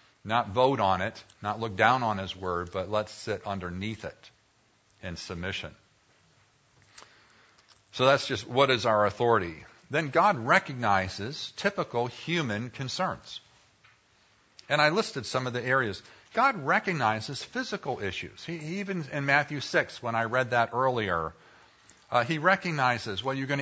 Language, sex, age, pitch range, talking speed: English, male, 50-69, 105-140 Hz, 145 wpm